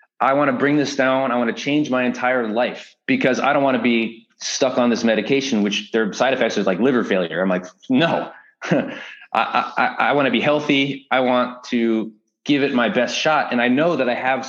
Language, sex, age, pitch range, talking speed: English, male, 20-39, 105-130 Hz, 230 wpm